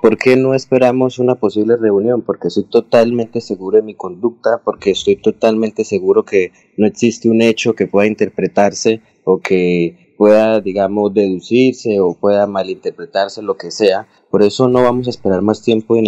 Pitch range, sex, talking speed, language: 100-120 Hz, male, 170 wpm, Spanish